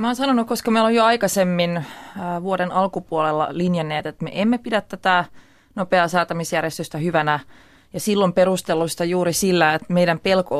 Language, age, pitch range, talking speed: Finnish, 20-39, 160-185 Hz, 155 wpm